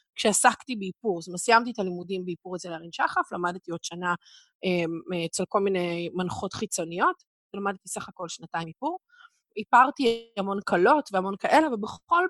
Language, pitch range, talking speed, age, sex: Hebrew, 190-285 Hz, 145 wpm, 20-39, female